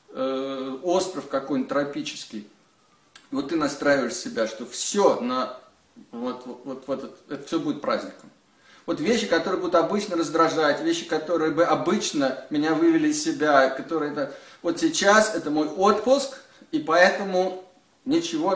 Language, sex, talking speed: Russian, male, 140 wpm